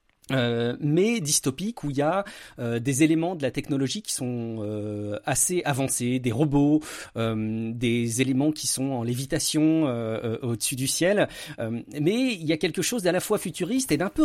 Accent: French